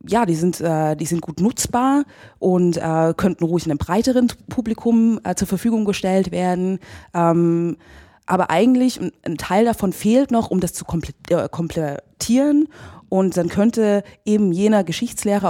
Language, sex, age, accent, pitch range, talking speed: German, female, 20-39, German, 160-210 Hz, 130 wpm